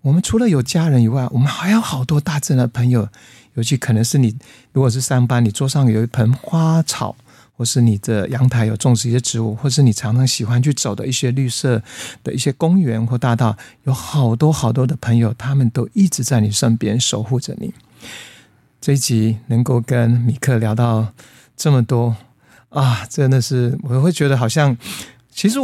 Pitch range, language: 115-135 Hz, Chinese